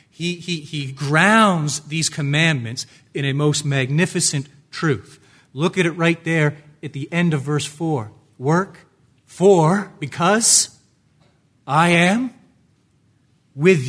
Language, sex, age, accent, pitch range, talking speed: English, male, 40-59, American, 130-155 Hz, 120 wpm